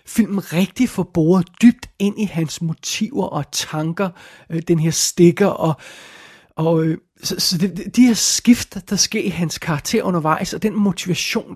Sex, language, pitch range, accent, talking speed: male, Danish, 160-195 Hz, native, 165 wpm